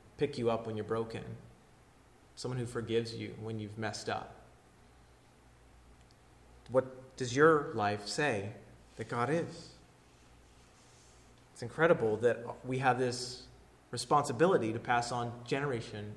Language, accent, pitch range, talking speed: English, American, 110-175 Hz, 125 wpm